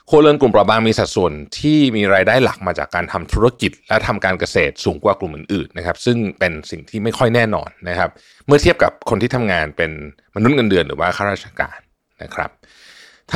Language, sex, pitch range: Thai, male, 90-115 Hz